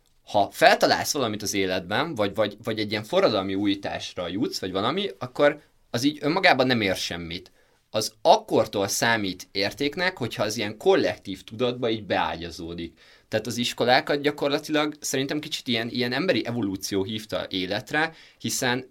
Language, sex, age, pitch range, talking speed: Hungarian, male, 20-39, 95-130 Hz, 145 wpm